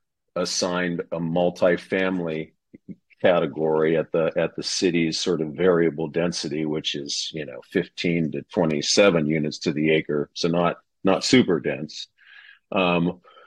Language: English